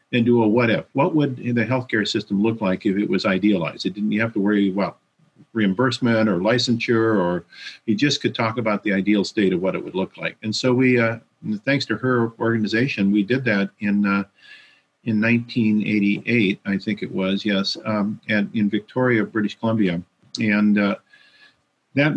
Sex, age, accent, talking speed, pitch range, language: male, 50-69, American, 190 wpm, 100-120 Hz, English